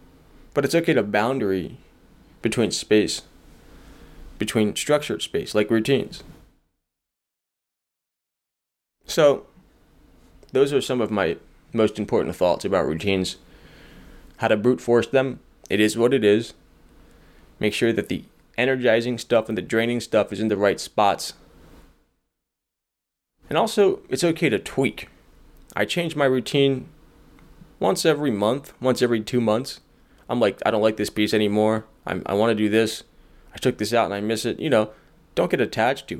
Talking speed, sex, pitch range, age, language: 155 wpm, male, 105-130 Hz, 20-39, English